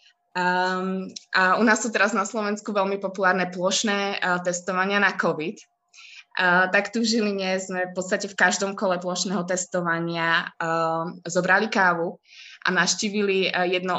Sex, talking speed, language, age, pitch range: female, 145 wpm, Czech, 20-39, 170-200 Hz